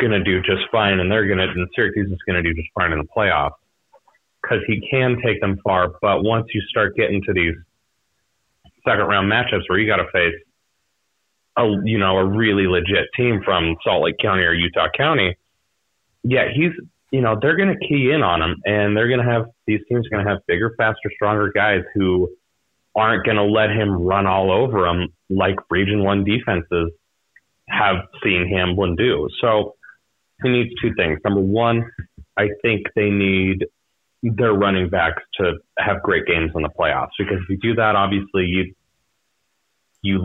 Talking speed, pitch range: 190 wpm, 90-110 Hz